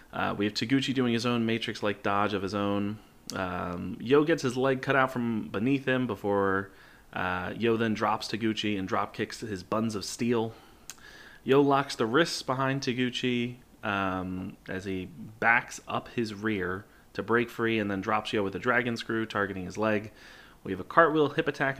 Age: 30-49